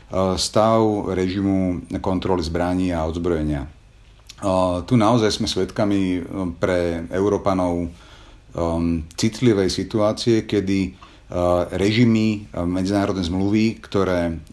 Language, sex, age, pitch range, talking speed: Slovak, male, 40-59, 90-105 Hz, 80 wpm